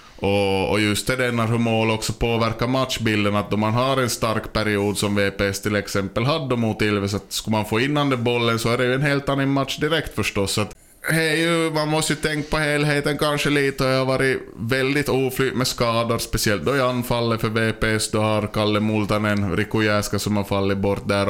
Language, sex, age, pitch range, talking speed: Swedish, male, 20-39, 105-125 Hz, 205 wpm